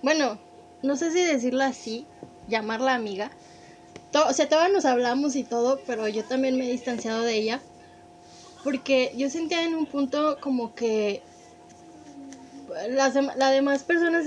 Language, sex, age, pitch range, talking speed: Spanish, female, 20-39, 230-300 Hz, 155 wpm